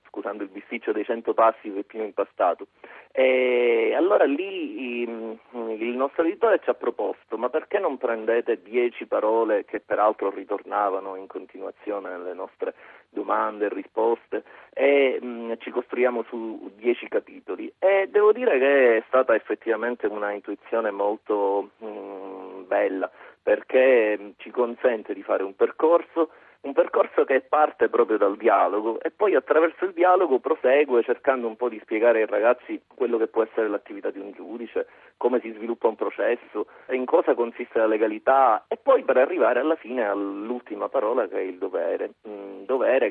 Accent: native